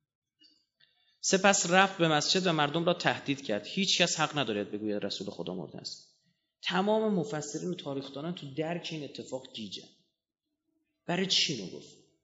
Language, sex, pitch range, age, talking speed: Persian, male, 145-190 Hz, 30-49, 155 wpm